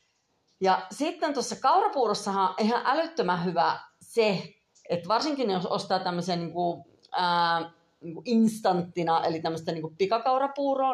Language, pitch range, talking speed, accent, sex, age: Finnish, 170-230 Hz, 130 wpm, native, female, 40-59